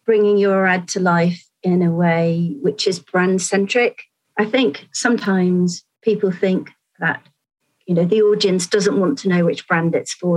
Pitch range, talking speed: 175-215 Hz, 175 wpm